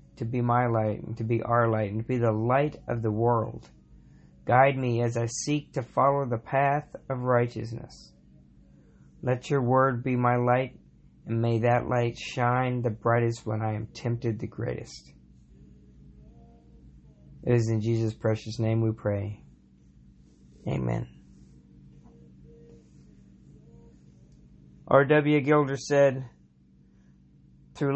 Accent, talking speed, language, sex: American, 130 wpm, English, male